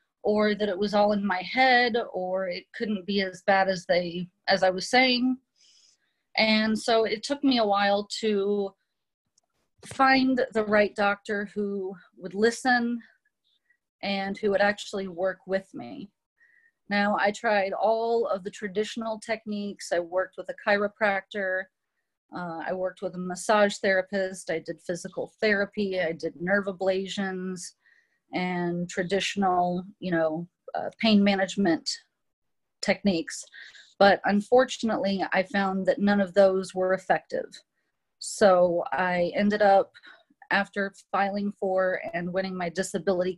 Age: 30-49